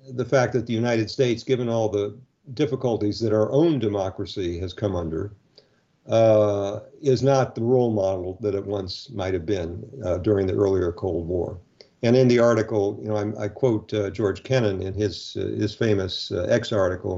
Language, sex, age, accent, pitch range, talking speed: English, male, 50-69, American, 100-115 Hz, 190 wpm